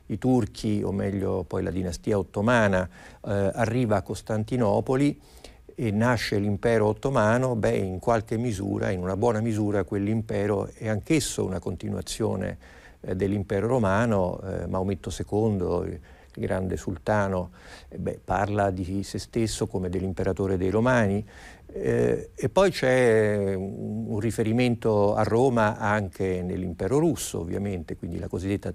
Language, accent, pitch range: Italian, native, 95-115 Hz